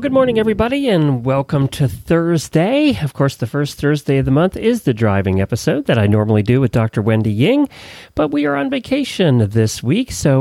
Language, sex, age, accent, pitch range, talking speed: English, male, 40-59, American, 120-180 Hz, 200 wpm